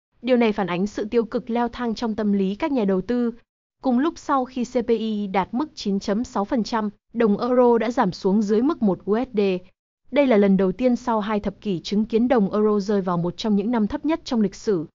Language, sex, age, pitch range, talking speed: Vietnamese, female, 20-39, 195-235 Hz, 230 wpm